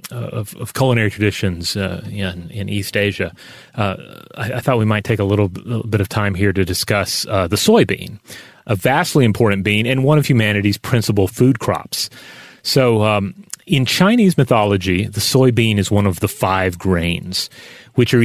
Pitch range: 95-120 Hz